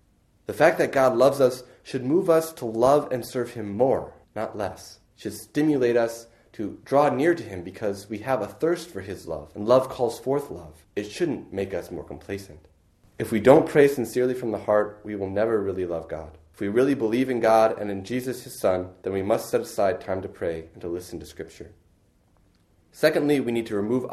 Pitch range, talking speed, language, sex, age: 90-125 Hz, 220 wpm, English, male, 30-49